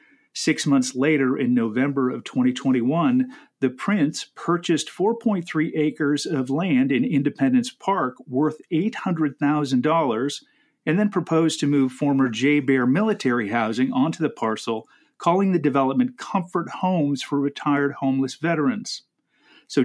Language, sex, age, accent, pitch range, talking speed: English, male, 40-59, American, 130-205 Hz, 125 wpm